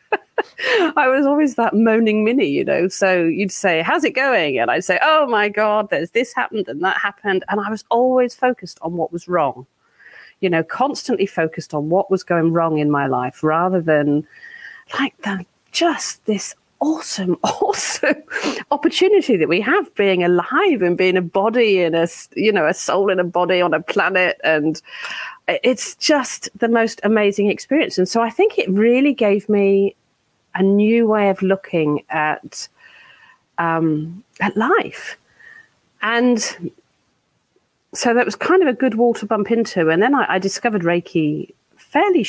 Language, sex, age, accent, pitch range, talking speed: English, female, 40-59, British, 170-250 Hz, 170 wpm